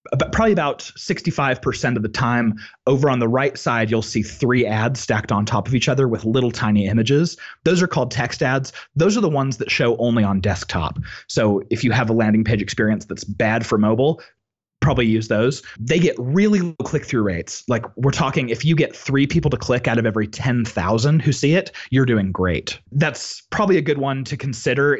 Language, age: English, 30-49